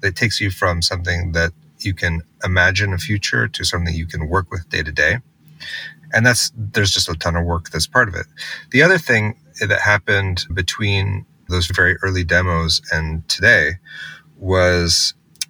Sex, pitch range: male, 85-100 Hz